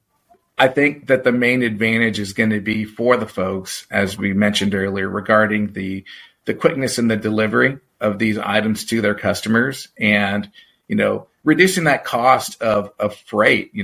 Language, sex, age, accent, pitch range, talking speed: English, male, 40-59, American, 105-125 Hz, 175 wpm